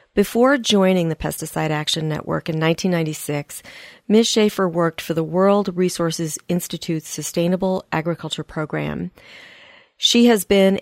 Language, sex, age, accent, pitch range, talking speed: English, female, 40-59, American, 160-195 Hz, 120 wpm